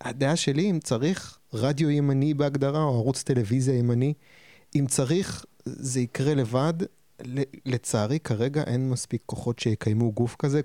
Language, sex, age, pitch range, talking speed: Hebrew, male, 20-39, 115-140 Hz, 135 wpm